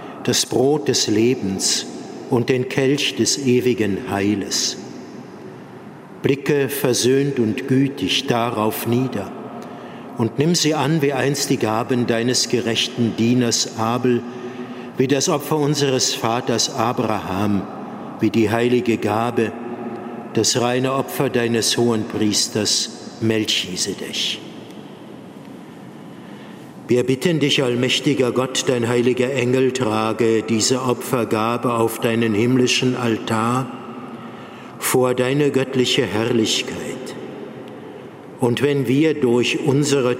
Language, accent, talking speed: German, German, 105 wpm